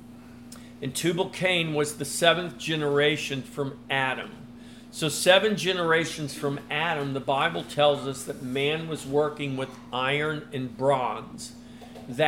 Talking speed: 120 wpm